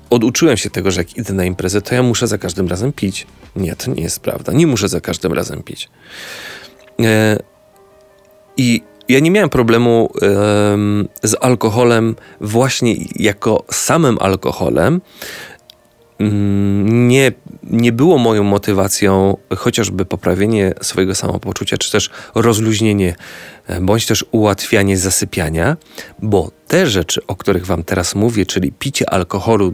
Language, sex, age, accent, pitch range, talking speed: Polish, male, 40-59, native, 95-115 Hz, 130 wpm